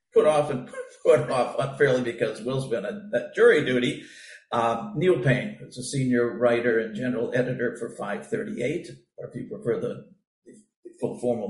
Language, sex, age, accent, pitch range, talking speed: English, male, 50-69, American, 120-155 Hz, 165 wpm